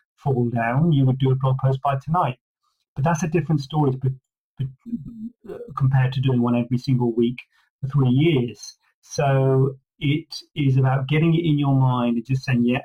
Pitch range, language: 125-145 Hz, English